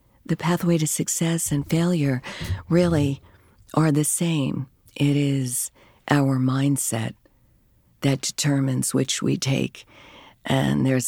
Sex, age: female, 50-69